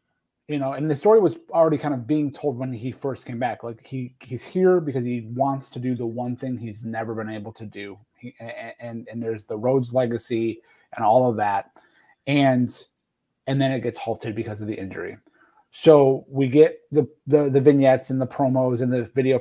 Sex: male